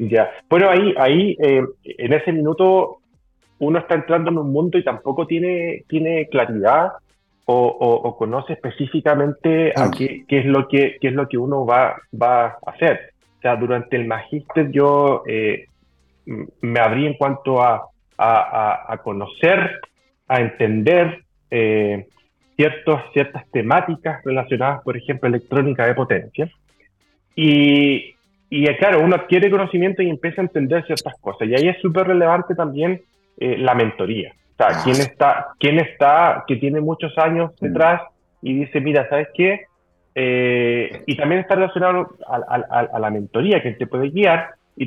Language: Spanish